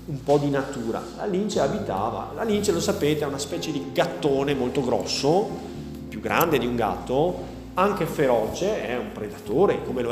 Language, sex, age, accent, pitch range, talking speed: Italian, male, 30-49, native, 125-180 Hz, 180 wpm